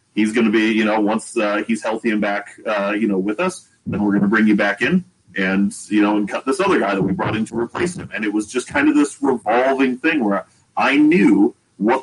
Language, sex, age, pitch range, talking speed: English, male, 30-49, 100-145 Hz, 265 wpm